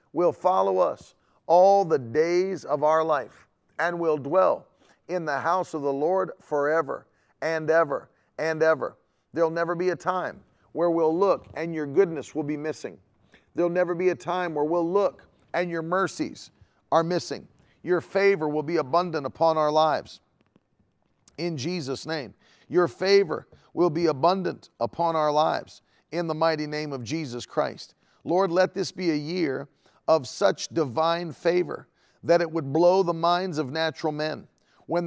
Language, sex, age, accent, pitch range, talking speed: English, male, 40-59, American, 150-175 Hz, 165 wpm